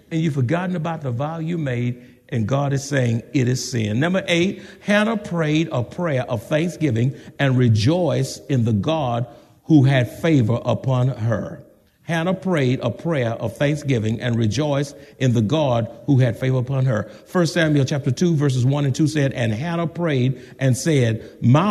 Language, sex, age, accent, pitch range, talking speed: English, male, 50-69, American, 120-160 Hz, 175 wpm